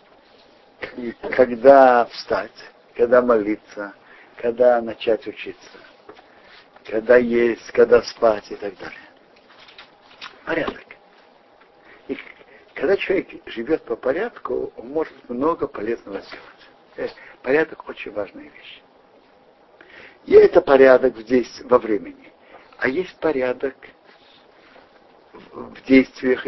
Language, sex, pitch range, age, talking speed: Russian, male, 120-195 Hz, 60-79, 95 wpm